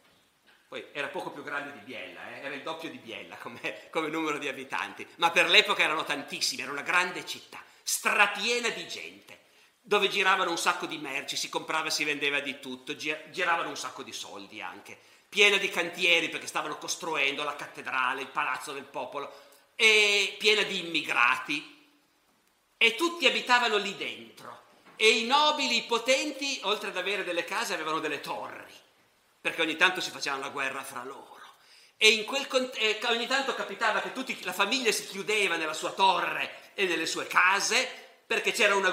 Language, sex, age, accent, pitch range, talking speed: Italian, male, 50-69, native, 170-240 Hz, 175 wpm